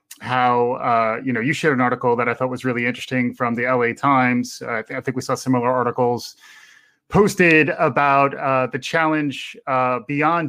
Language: English